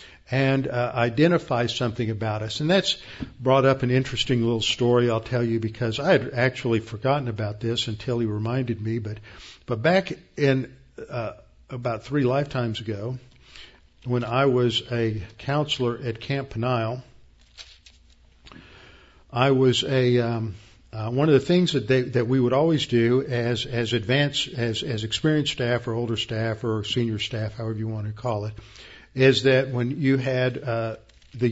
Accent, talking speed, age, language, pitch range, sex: American, 165 wpm, 50-69, English, 115-130 Hz, male